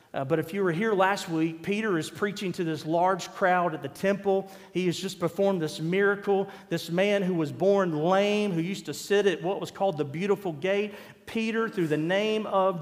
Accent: American